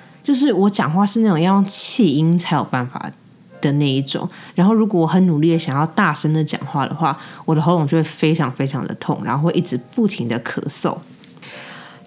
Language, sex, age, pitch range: Chinese, female, 20-39, 150-200 Hz